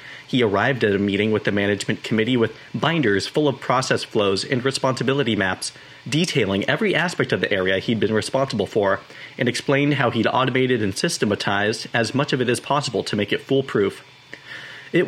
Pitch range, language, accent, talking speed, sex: 110-140 Hz, English, American, 185 wpm, male